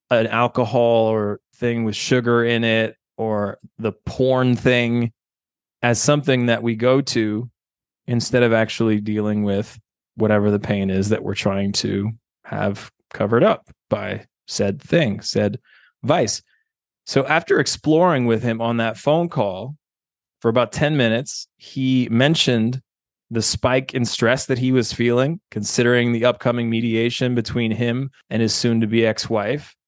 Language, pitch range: English, 115-140 Hz